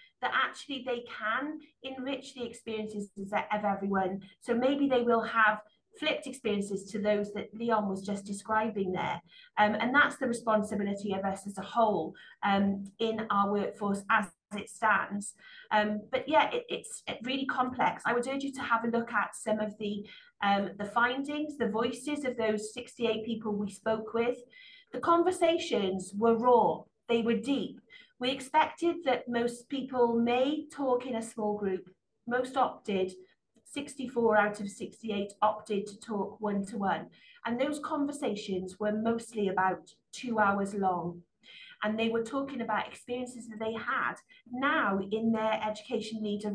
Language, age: English, 30-49